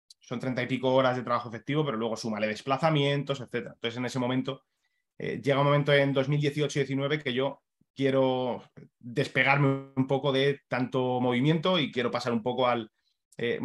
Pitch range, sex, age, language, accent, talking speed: 125-145 Hz, male, 20-39, Spanish, Spanish, 175 wpm